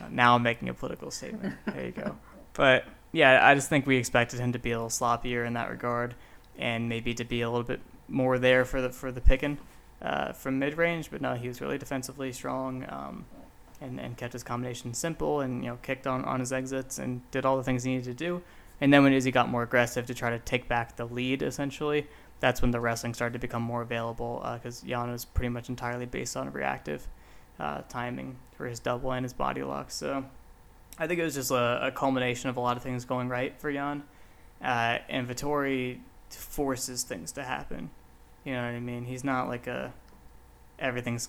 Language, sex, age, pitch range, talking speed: English, male, 20-39, 120-130 Hz, 220 wpm